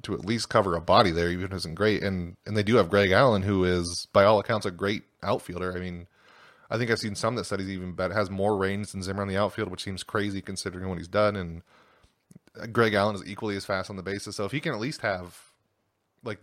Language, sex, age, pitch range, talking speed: English, male, 20-39, 90-110 Hz, 265 wpm